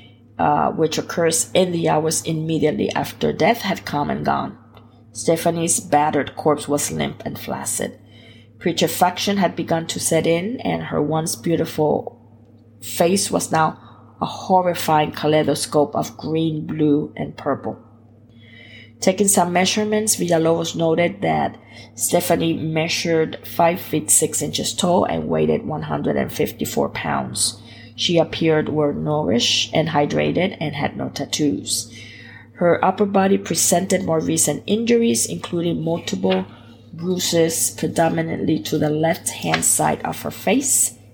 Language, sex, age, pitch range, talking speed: English, female, 20-39, 115-165 Hz, 125 wpm